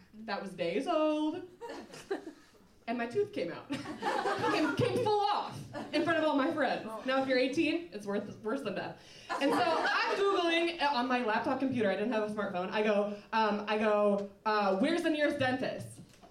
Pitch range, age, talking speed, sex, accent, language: 215-315 Hz, 20-39, 190 wpm, female, American, English